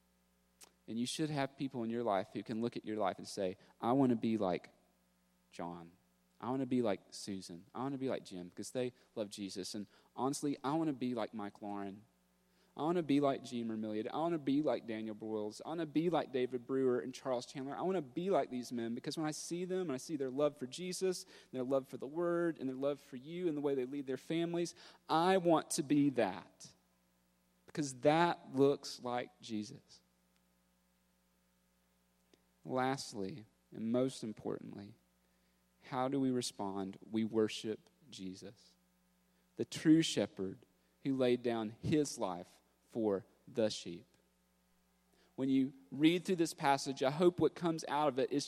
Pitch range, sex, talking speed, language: 100-160 Hz, male, 190 wpm, English